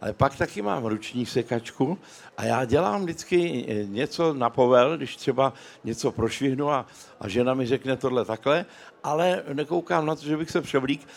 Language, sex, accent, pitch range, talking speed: Czech, male, native, 125-160 Hz, 170 wpm